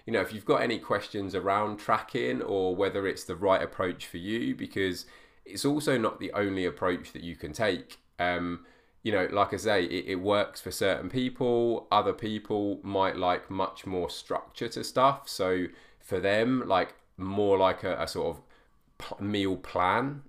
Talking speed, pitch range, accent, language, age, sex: 175 wpm, 90-110 Hz, British, English, 20-39, male